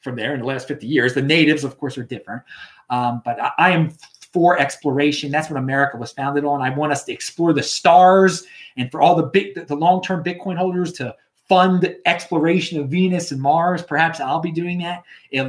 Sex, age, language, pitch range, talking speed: male, 30-49, English, 135-185 Hz, 215 wpm